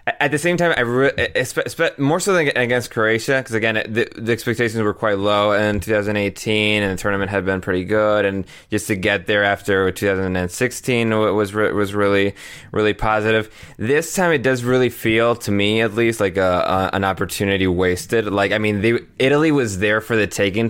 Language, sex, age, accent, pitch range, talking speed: English, male, 20-39, American, 95-115 Hz, 205 wpm